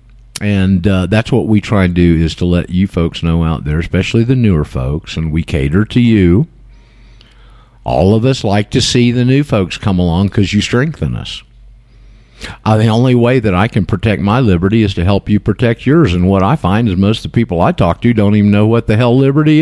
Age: 50-69